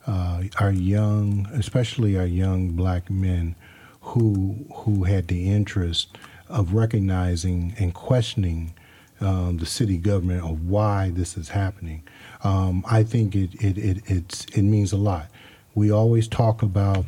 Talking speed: 145 wpm